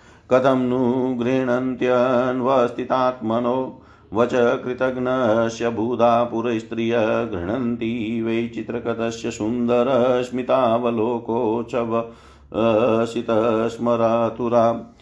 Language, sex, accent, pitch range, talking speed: Hindi, male, native, 115-125 Hz, 45 wpm